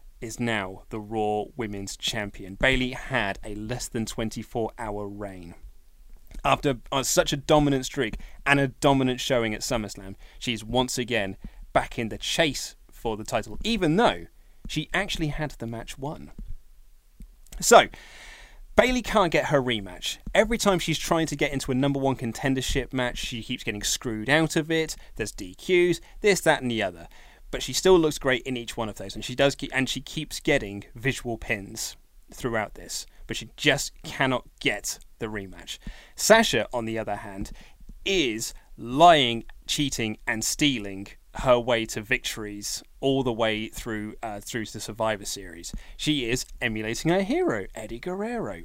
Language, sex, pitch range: English, male, 110-155 Hz